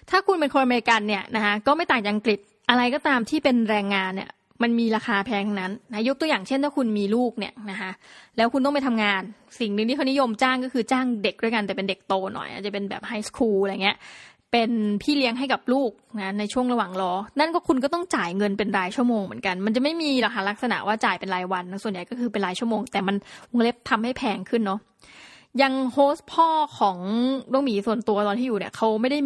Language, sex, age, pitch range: Thai, female, 20-39, 205-260 Hz